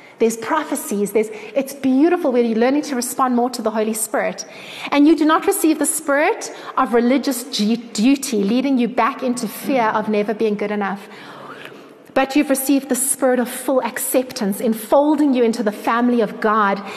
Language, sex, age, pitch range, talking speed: English, female, 30-49, 220-285 Hz, 175 wpm